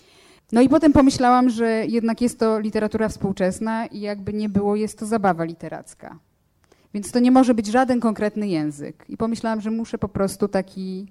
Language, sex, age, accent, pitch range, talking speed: Polish, female, 20-39, native, 200-230 Hz, 180 wpm